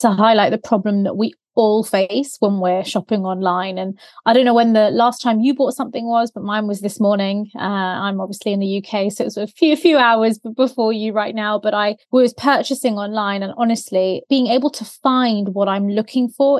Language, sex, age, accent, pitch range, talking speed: English, female, 20-39, British, 205-245 Hz, 220 wpm